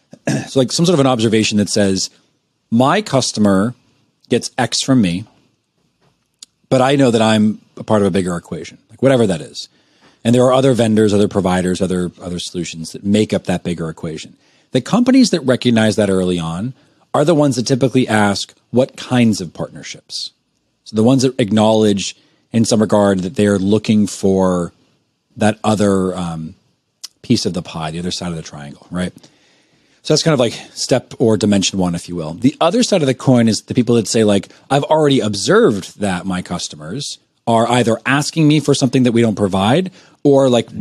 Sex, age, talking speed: male, 40-59, 195 wpm